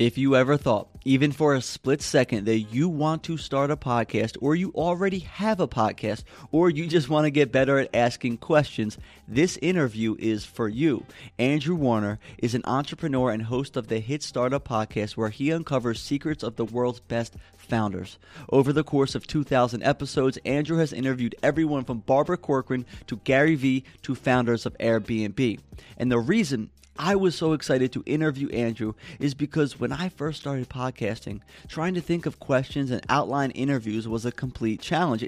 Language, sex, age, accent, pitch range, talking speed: English, male, 30-49, American, 120-150 Hz, 180 wpm